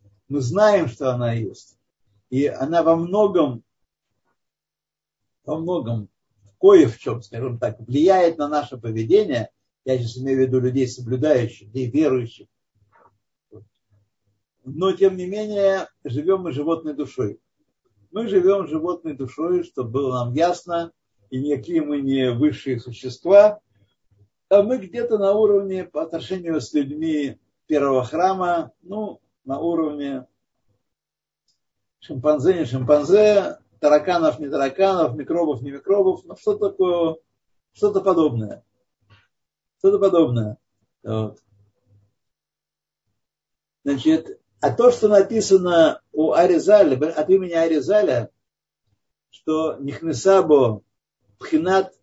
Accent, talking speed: native, 110 wpm